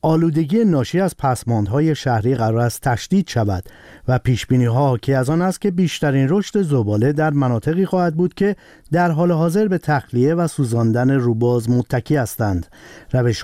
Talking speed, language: 165 wpm, Persian